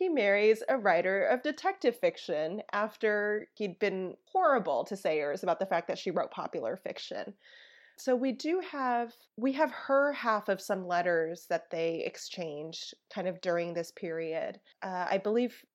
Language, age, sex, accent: English, 20-39, female, American